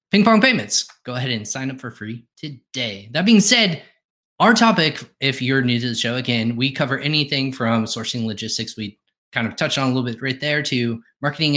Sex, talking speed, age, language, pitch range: male, 215 wpm, 20-39, English, 110-145 Hz